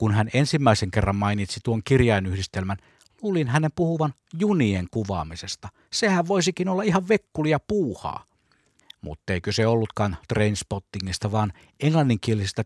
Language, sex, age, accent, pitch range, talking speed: Finnish, male, 60-79, native, 100-140 Hz, 120 wpm